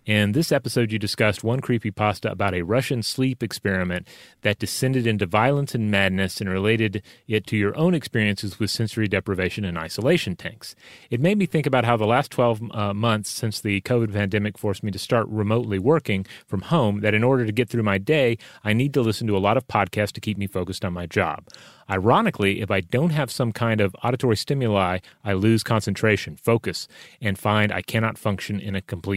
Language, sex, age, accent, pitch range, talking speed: English, male, 30-49, American, 100-120 Hz, 205 wpm